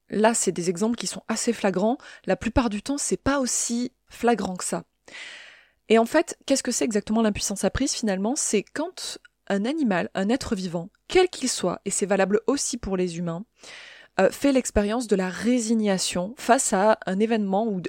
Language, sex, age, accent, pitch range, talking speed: French, female, 20-39, French, 190-245 Hz, 190 wpm